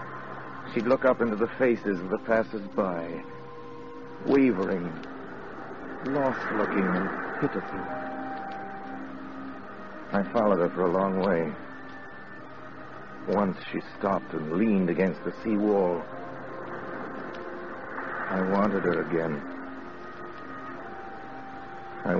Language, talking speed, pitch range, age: English, 90 wpm, 90-125 Hz, 60-79